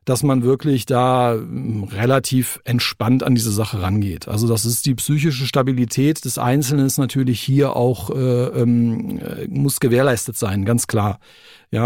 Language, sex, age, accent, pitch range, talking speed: German, male, 50-69, German, 120-140 Hz, 150 wpm